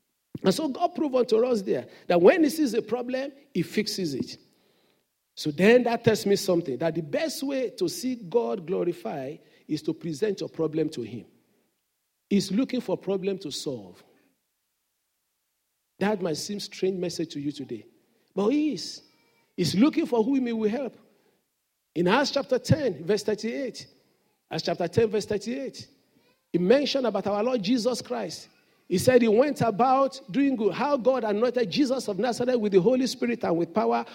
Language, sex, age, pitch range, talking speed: English, male, 50-69, 200-270 Hz, 175 wpm